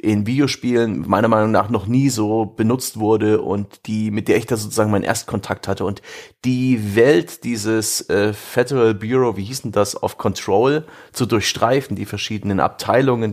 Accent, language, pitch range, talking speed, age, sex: German, German, 100-125 Hz, 170 wpm, 30-49, male